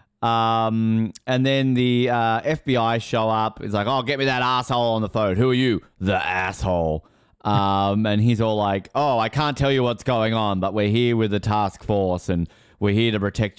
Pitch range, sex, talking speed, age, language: 100-130 Hz, male, 210 wpm, 30-49, English